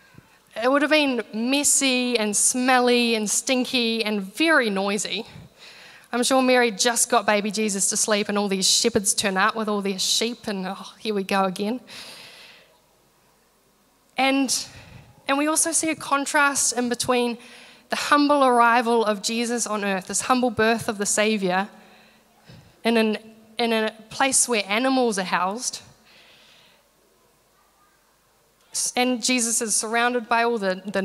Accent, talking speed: Australian, 145 wpm